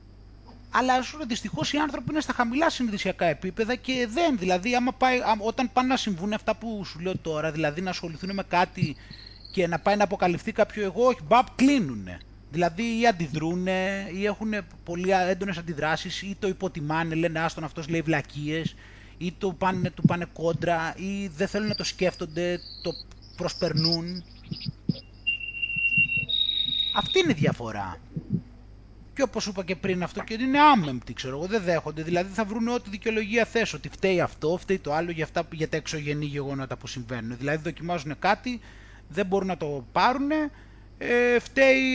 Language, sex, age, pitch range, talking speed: Greek, male, 30-49, 155-210 Hz, 165 wpm